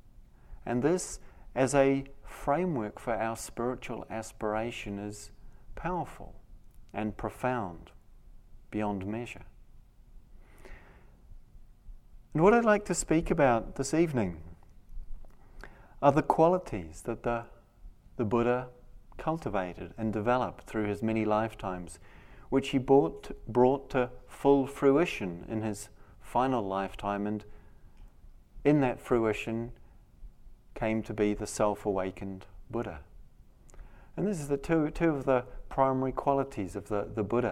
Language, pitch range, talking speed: English, 100-125 Hz, 115 wpm